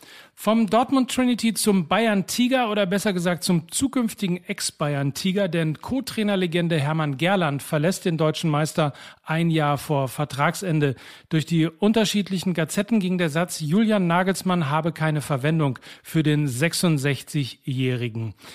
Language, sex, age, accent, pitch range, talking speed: German, male, 40-59, German, 145-185 Hz, 125 wpm